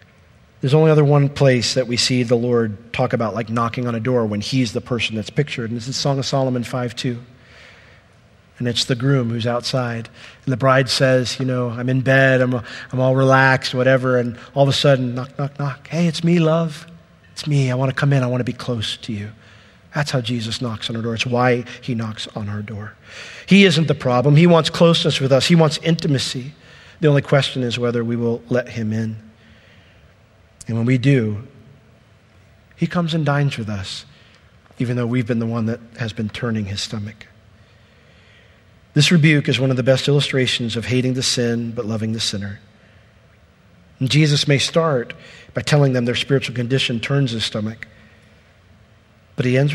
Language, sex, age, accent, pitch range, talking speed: English, male, 40-59, American, 110-135 Hz, 200 wpm